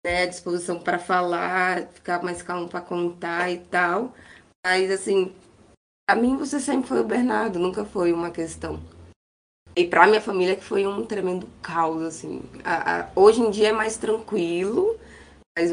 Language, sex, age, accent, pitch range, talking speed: Portuguese, female, 20-39, Brazilian, 170-195 Hz, 165 wpm